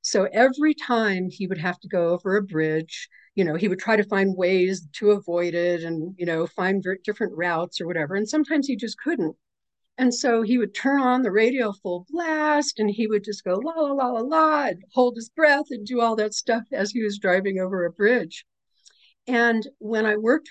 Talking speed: 215 wpm